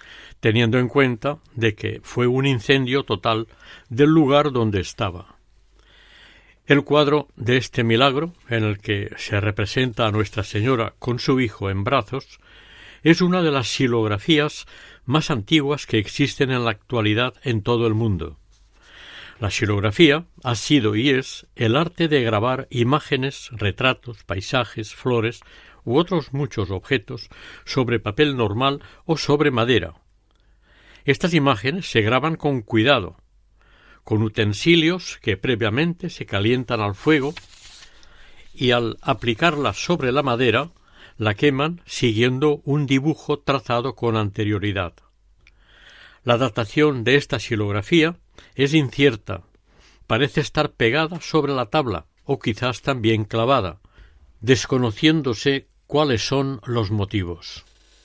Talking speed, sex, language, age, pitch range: 125 wpm, male, Spanish, 60-79, 110-145 Hz